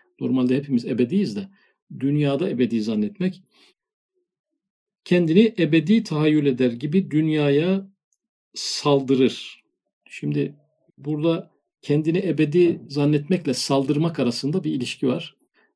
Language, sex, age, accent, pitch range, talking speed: Turkish, male, 50-69, native, 135-185 Hz, 90 wpm